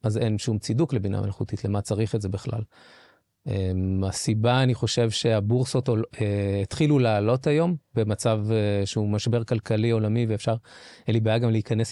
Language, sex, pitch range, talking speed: Hebrew, male, 110-125 Hz, 145 wpm